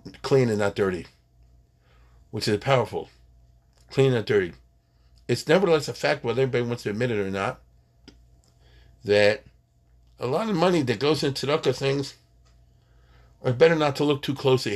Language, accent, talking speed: English, American, 155 wpm